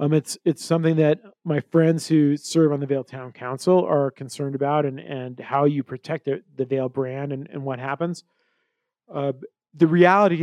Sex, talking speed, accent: male, 190 wpm, American